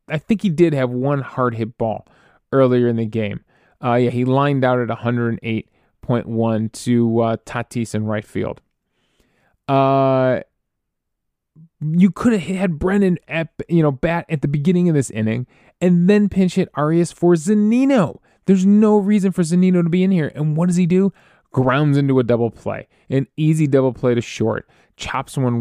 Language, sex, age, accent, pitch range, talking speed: English, male, 20-39, American, 120-170 Hz, 175 wpm